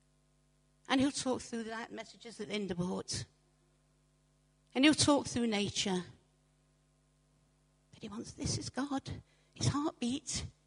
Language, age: English, 60-79